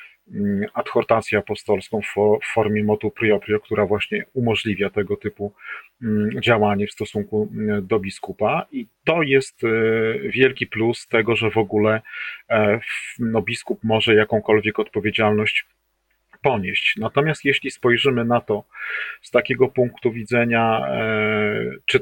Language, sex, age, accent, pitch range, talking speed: Polish, male, 40-59, native, 105-120 Hz, 110 wpm